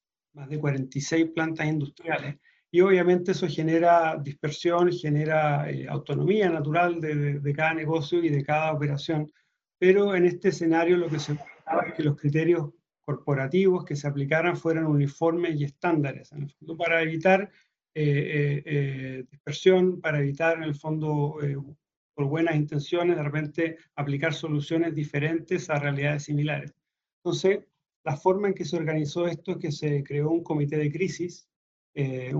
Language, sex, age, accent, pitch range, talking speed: Spanish, male, 40-59, Argentinian, 145-170 Hz, 155 wpm